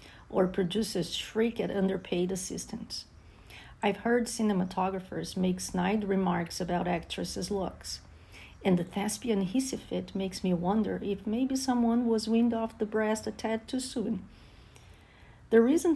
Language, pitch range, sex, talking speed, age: English, 185-240 Hz, female, 140 wpm, 50-69